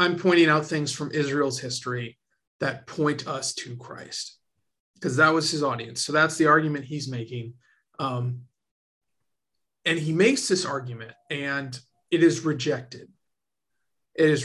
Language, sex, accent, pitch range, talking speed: English, male, American, 130-160 Hz, 145 wpm